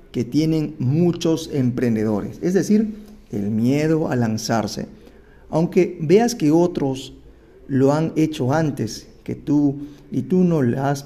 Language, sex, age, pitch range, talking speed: Spanish, male, 40-59, 130-175 Hz, 135 wpm